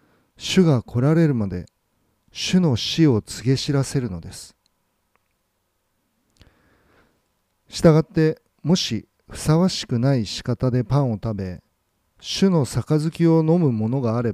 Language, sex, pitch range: Japanese, male, 100-155 Hz